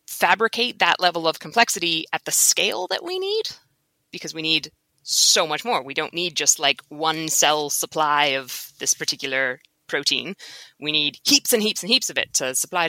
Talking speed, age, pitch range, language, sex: 185 wpm, 20-39, 150-205 Hz, English, female